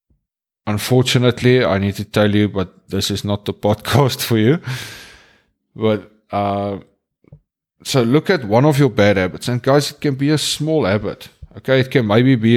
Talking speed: 175 wpm